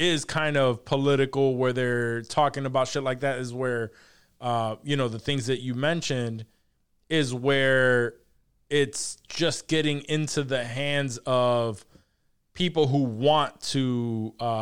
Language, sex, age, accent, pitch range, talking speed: English, male, 20-39, American, 125-155 Hz, 145 wpm